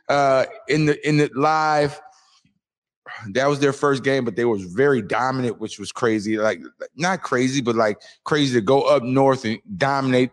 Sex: male